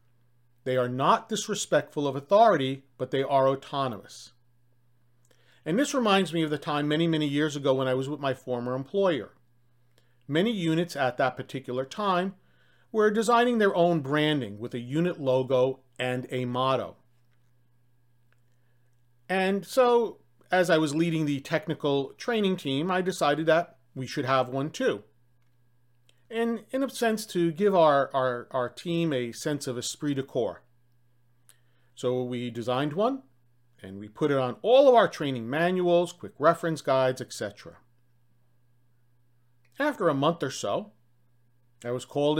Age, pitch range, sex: 40-59, 120-160 Hz, male